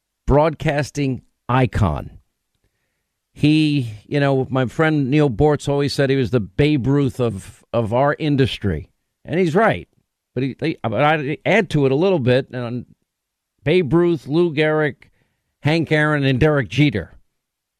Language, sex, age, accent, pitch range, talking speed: English, male, 50-69, American, 115-150 Hz, 145 wpm